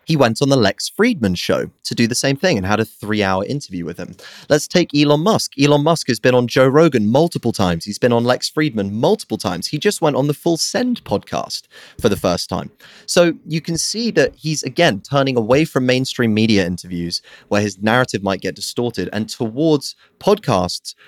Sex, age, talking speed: male, 30-49, 210 wpm